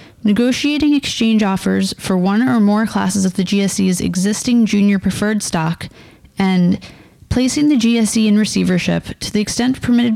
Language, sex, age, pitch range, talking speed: English, female, 30-49, 195-240 Hz, 150 wpm